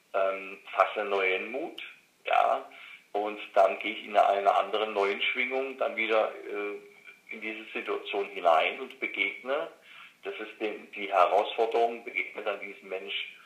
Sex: male